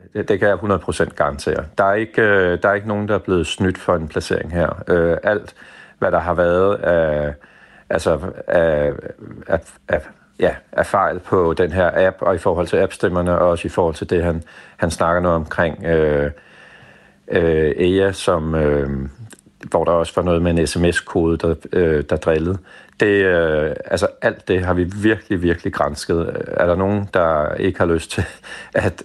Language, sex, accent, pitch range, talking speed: Danish, male, native, 80-95 Hz, 180 wpm